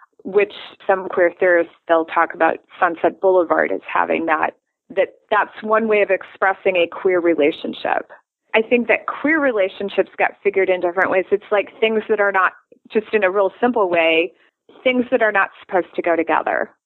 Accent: American